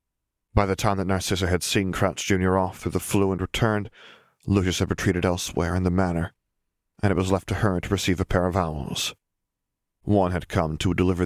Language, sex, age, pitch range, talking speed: English, male, 40-59, 90-100 Hz, 210 wpm